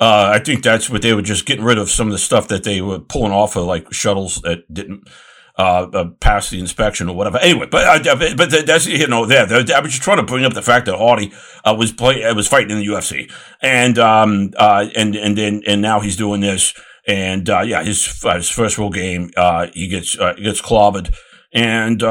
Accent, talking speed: American, 235 wpm